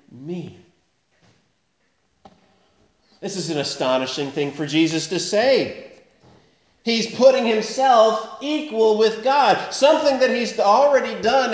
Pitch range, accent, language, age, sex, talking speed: 175-240 Hz, American, English, 40-59, male, 110 wpm